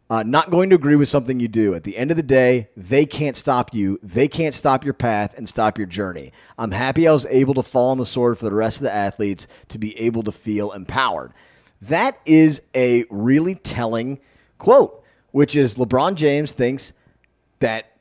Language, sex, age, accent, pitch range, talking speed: English, male, 30-49, American, 115-145 Hz, 205 wpm